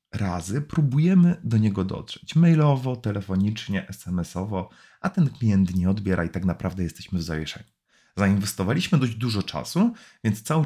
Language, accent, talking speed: Polish, native, 140 wpm